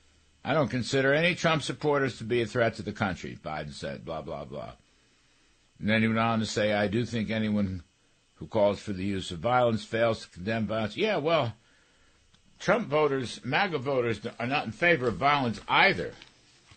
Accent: American